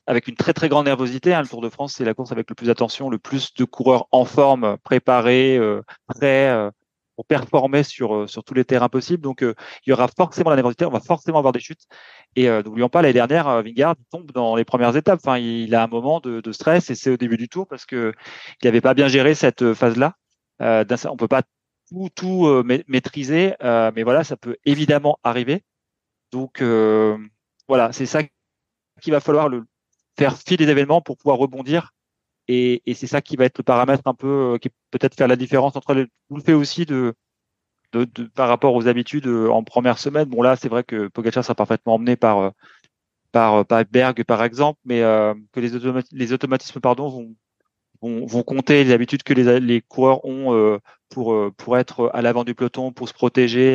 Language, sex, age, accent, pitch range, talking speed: French, male, 30-49, French, 115-135 Hz, 205 wpm